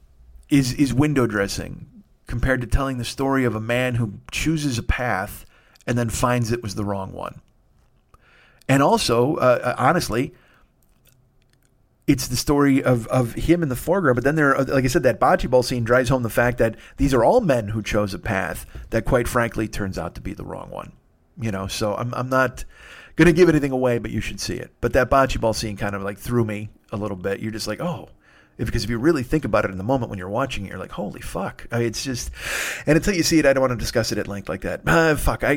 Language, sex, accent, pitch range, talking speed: English, male, American, 105-135 Hz, 245 wpm